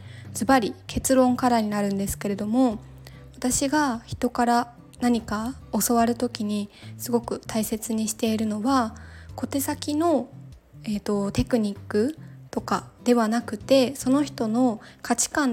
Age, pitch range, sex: 20-39, 205-255 Hz, female